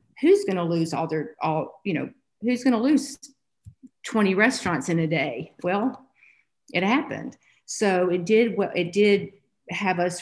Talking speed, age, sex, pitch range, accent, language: 170 wpm, 50-69, female, 160-200 Hz, American, English